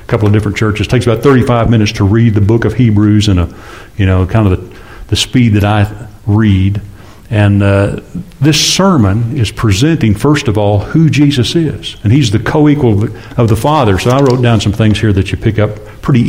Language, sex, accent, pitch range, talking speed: English, male, American, 105-130 Hz, 220 wpm